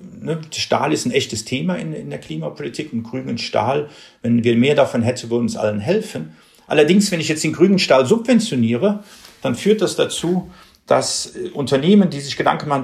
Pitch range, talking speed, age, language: 120-185 Hz, 180 wpm, 50-69, German